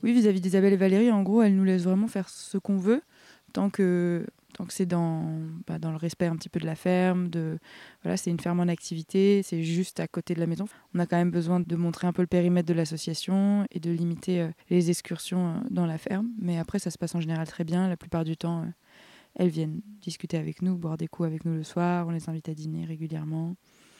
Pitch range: 170-190 Hz